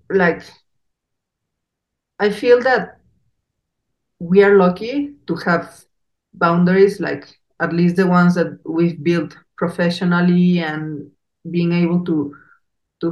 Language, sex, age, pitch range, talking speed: English, female, 40-59, 165-190 Hz, 110 wpm